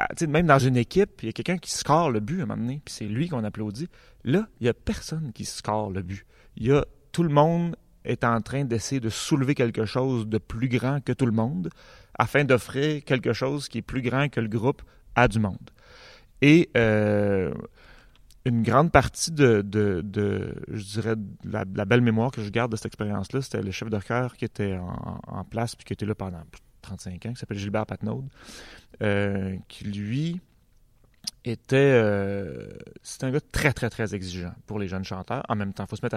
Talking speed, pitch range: 215 wpm, 105-130 Hz